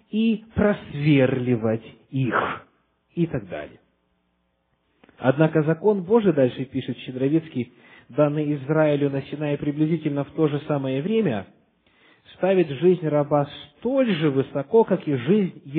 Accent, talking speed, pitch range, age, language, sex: native, 120 wpm, 135-175 Hz, 40-59, Russian, male